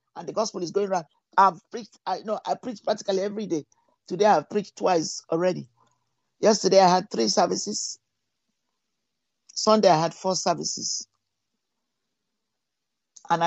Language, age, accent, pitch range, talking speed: English, 50-69, Nigerian, 165-210 Hz, 140 wpm